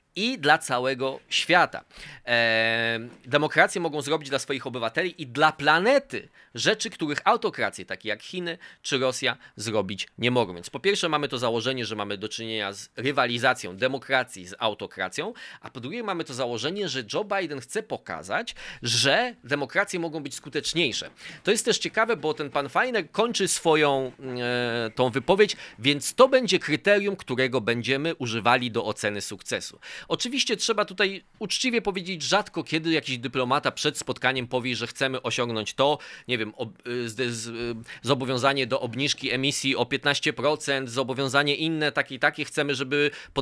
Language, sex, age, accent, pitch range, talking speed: Polish, male, 20-39, native, 125-160 Hz, 150 wpm